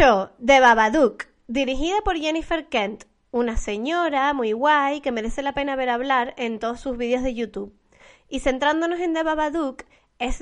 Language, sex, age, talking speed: Spanish, female, 20-39, 160 wpm